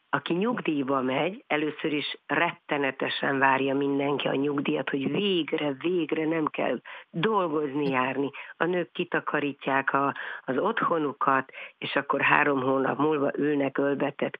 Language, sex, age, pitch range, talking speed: Hungarian, female, 50-69, 140-160 Hz, 125 wpm